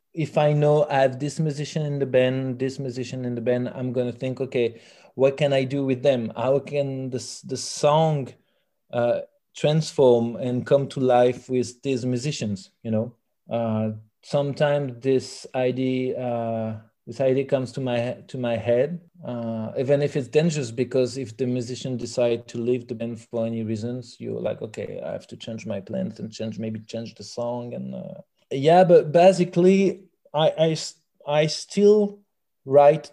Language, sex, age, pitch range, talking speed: English, male, 30-49, 115-140 Hz, 175 wpm